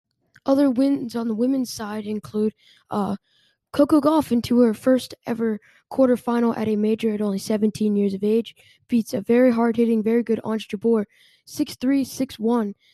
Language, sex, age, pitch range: English, female, 10-29, 225-260 Hz